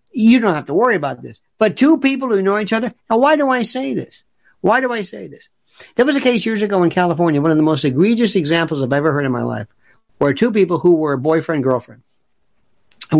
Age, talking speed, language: 50-69, 235 wpm, English